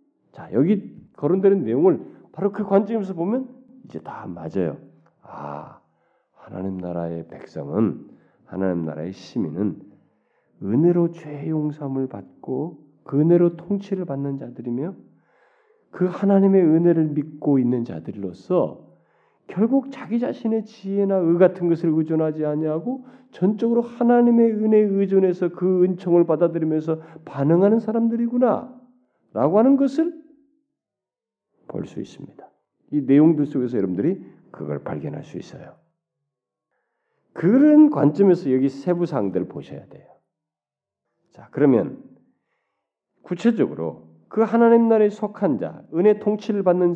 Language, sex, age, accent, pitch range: Korean, male, 40-59, native, 135-215 Hz